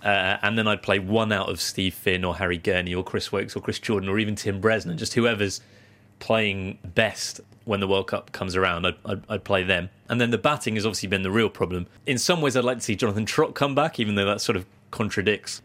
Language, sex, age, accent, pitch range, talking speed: English, male, 30-49, British, 95-110 Hz, 250 wpm